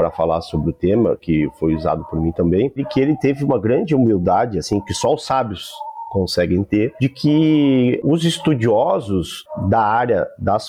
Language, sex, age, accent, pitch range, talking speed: Portuguese, male, 40-59, Brazilian, 100-155 Hz, 180 wpm